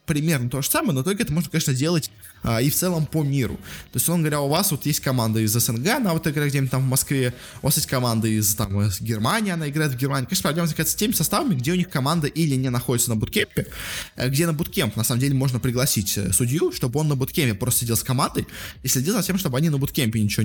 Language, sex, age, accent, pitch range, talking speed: Russian, male, 20-39, native, 115-150 Hz, 255 wpm